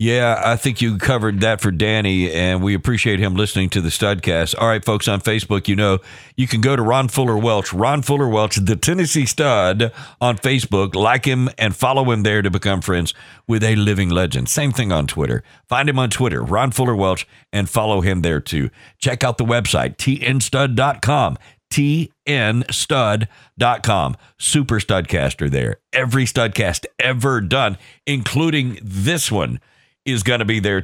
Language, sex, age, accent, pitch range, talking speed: English, male, 50-69, American, 105-135 Hz, 170 wpm